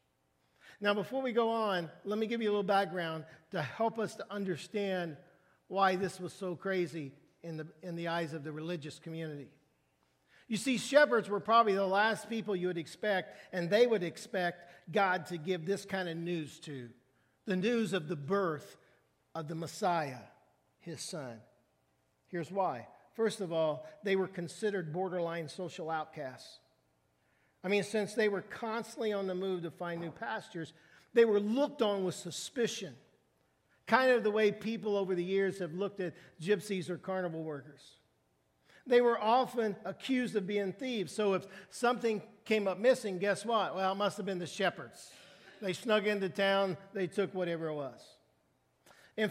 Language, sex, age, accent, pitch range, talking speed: English, male, 50-69, American, 170-210 Hz, 170 wpm